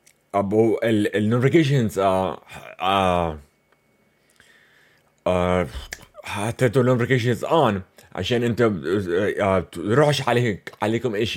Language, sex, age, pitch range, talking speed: English, male, 30-49, 115-155 Hz, 70 wpm